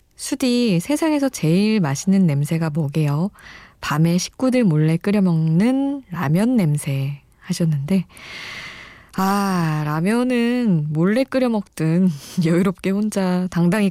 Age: 20-39